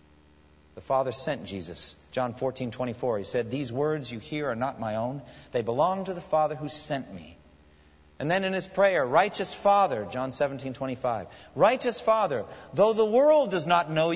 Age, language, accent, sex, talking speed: 50-69, English, American, male, 180 wpm